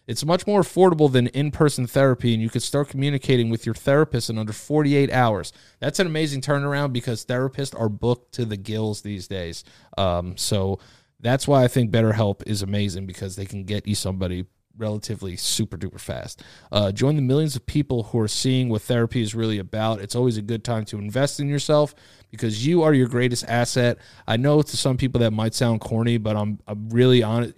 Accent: American